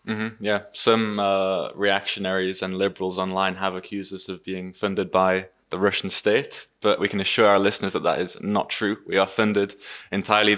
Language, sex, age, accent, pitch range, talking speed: English, male, 20-39, British, 100-110 Hz, 185 wpm